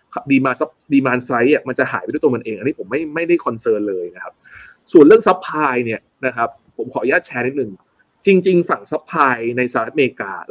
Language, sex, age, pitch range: Thai, male, 20-39, 125-185 Hz